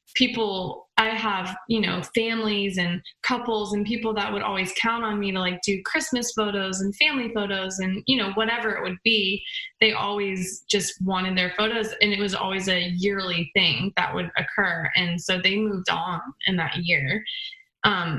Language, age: English, 20-39